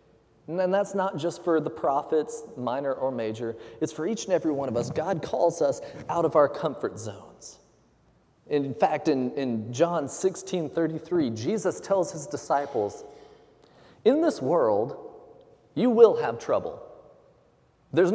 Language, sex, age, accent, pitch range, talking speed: English, male, 30-49, American, 150-220 Hz, 150 wpm